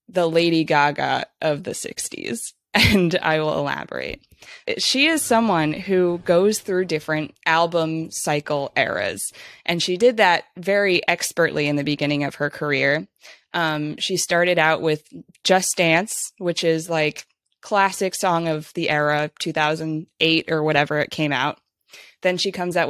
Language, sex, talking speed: English, female, 150 wpm